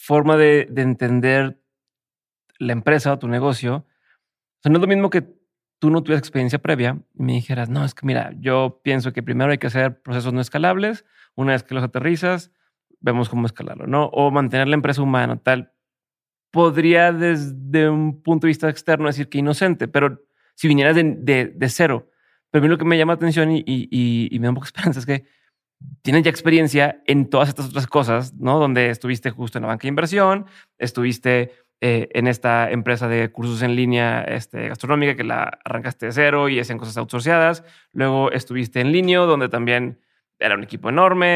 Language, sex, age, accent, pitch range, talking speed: Spanish, male, 30-49, Mexican, 125-155 Hz, 200 wpm